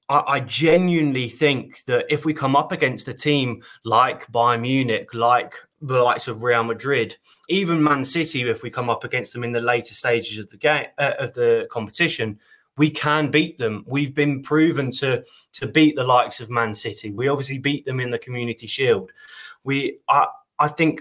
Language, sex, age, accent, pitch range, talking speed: English, male, 20-39, British, 120-140 Hz, 190 wpm